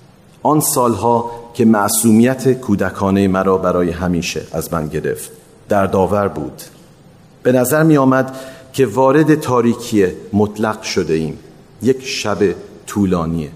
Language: Persian